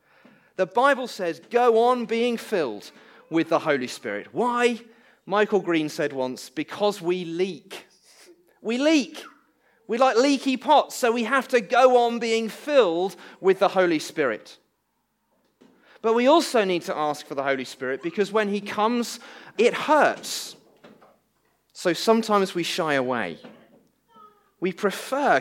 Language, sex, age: English, male, 30-49